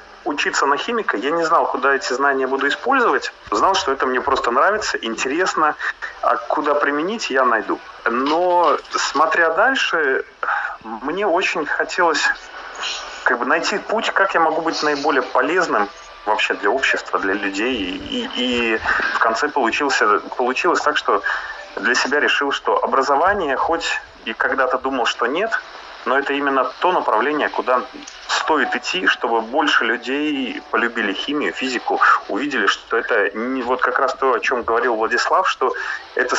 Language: Russian